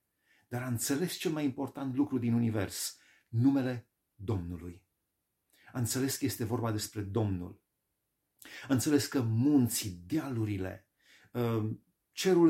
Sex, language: male, Romanian